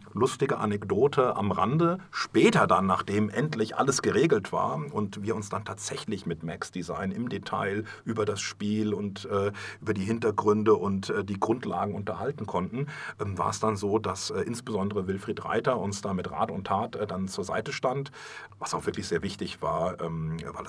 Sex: male